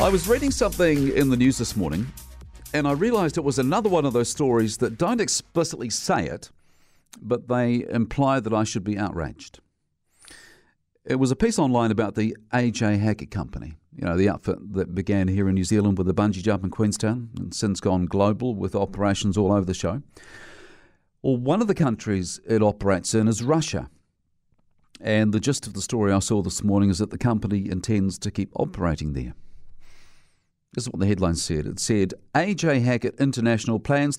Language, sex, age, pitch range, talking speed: English, male, 50-69, 95-125 Hz, 190 wpm